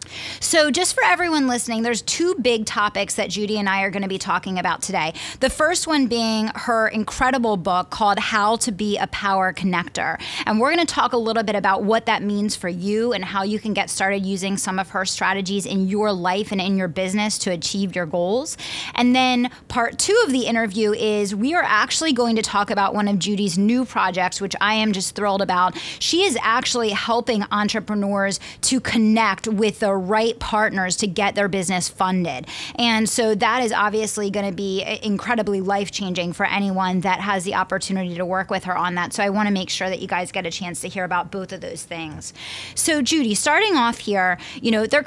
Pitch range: 195-230 Hz